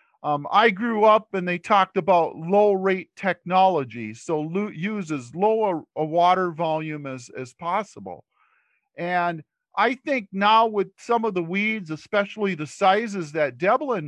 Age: 50-69